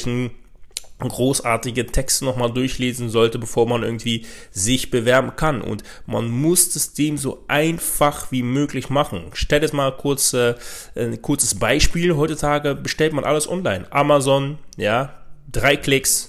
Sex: male